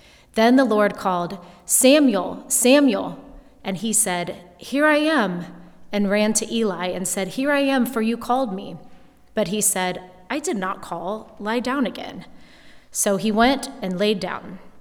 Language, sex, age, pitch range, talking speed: English, female, 30-49, 185-225 Hz, 165 wpm